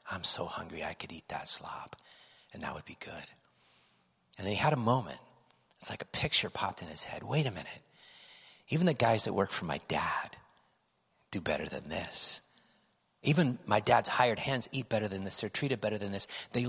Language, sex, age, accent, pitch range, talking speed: English, male, 40-59, American, 95-125 Hz, 205 wpm